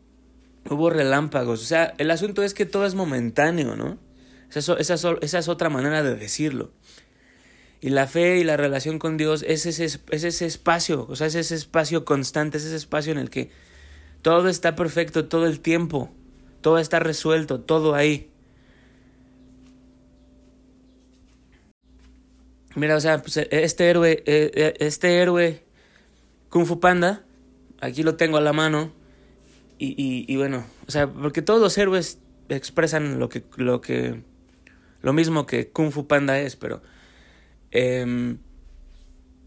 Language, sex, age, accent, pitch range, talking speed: Spanish, male, 30-49, Mexican, 130-165 Hz, 140 wpm